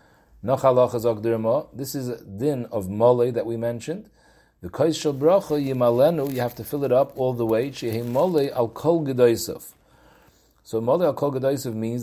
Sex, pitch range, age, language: male, 110-145 Hz, 40-59, English